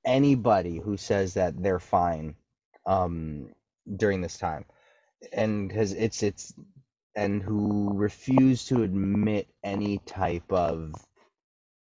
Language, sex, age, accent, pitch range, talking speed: English, male, 20-39, American, 90-110 Hz, 110 wpm